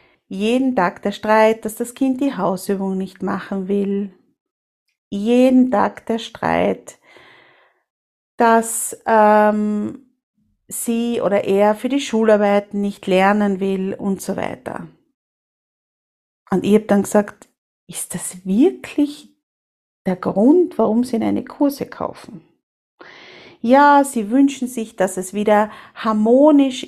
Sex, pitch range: female, 200-245 Hz